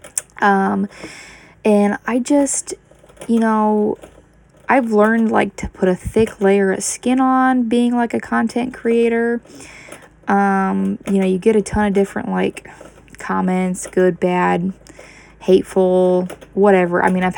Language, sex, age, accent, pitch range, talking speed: English, female, 10-29, American, 190-230 Hz, 140 wpm